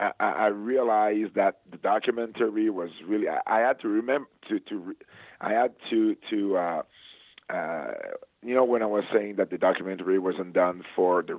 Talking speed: 175 wpm